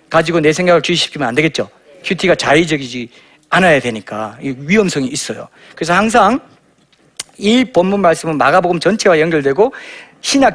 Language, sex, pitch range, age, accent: Korean, male, 145-210 Hz, 40-59, native